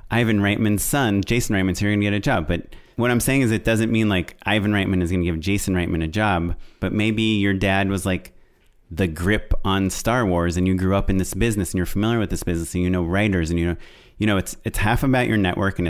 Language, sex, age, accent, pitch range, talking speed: English, male, 30-49, American, 90-110 Hz, 270 wpm